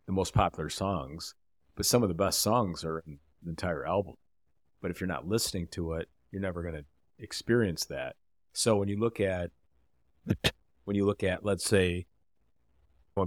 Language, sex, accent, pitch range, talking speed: English, male, American, 85-105 Hz, 175 wpm